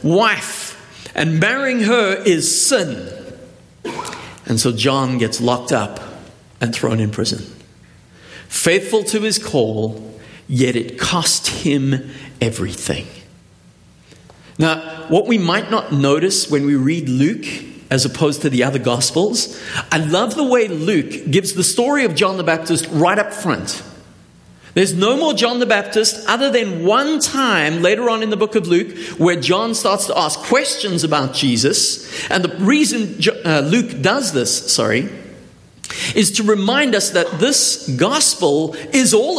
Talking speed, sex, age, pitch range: 150 wpm, male, 50-69, 145-225 Hz